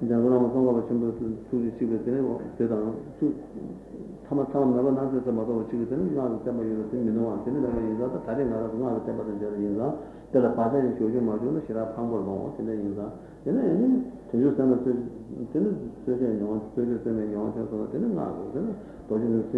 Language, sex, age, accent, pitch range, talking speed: Italian, male, 50-69, Indian, 110-125 Hz, 170 wpm